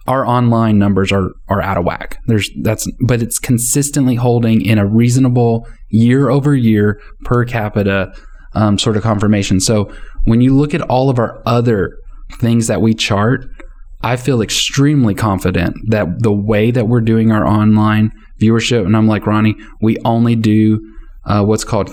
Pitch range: 105-125 Hz